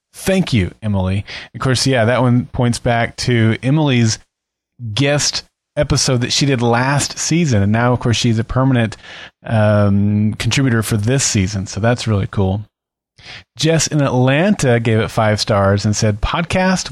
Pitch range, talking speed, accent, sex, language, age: 110-135 Hz, 160 wpm, American, male, English, 30-49